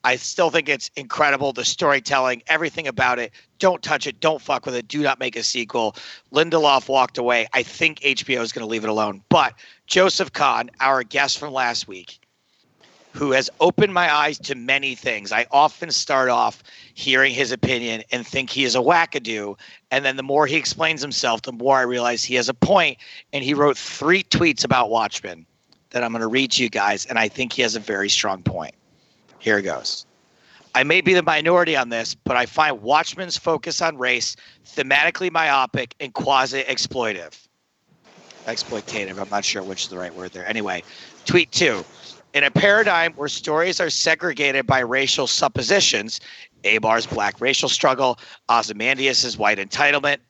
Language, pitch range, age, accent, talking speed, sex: English, 120-160 Hz, 40-59, American, 185 wpm, male